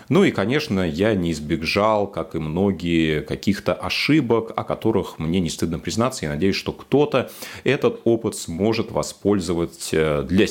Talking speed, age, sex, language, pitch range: 150 wpm, 30-49, male, Russian, 85-115 Hz